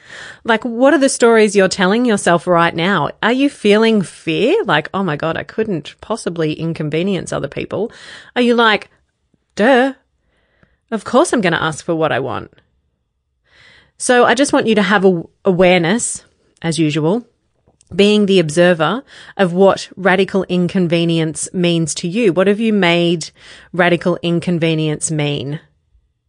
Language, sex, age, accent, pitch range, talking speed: English, female, 30-49, Australian, 160-210 Hz, 150 wpm